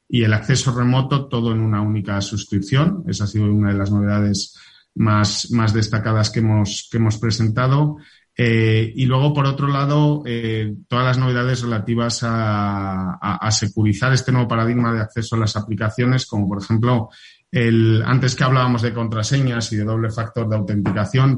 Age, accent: 30-49, Spanish